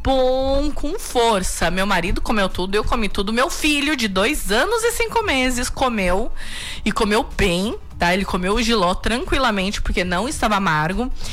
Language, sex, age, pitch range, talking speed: Portuguese, female, 20-39, 195-275 Hz, 165 wpm